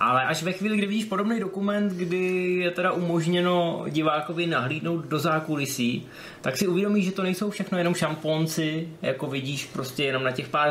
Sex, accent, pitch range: male, native, 130-180 Hz